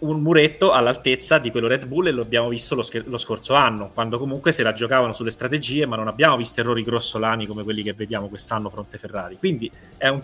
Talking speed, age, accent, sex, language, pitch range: 225 wpm, 20-39, native, male, Italian, 110-135 Hz